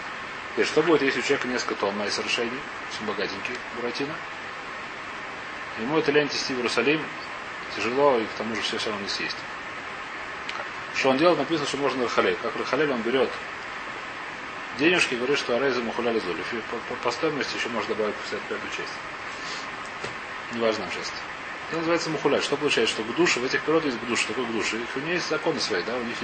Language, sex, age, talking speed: Russian, male, 30-49, 175 wpm